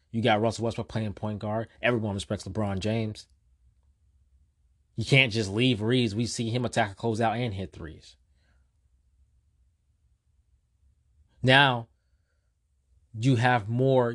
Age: 20-39